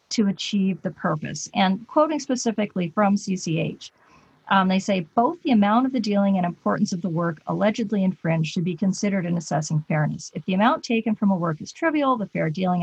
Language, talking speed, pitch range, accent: English, 200 wpm, 170-225 Hz, American